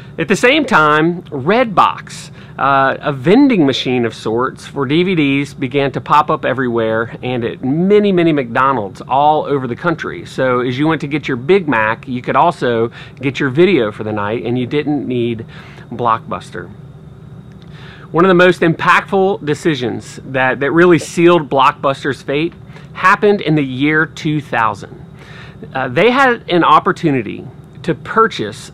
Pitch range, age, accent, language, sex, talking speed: 135-175 Hz, 40-59, American, English, male, 155 wpm